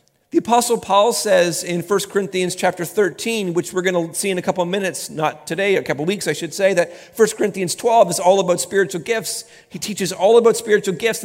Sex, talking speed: male, 235 wpm